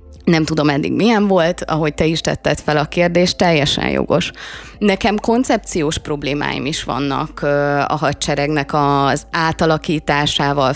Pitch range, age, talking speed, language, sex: 150-185 Hz, 20-39, 130 wpm, Hungarian, female